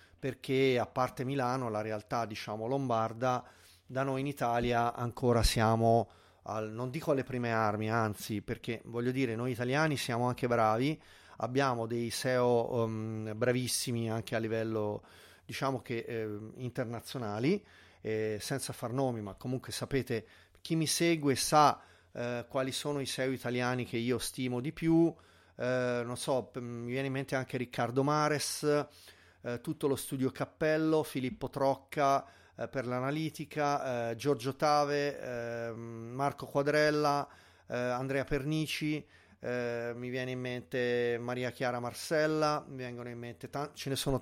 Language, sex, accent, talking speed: Italian, male, native, 145 wpm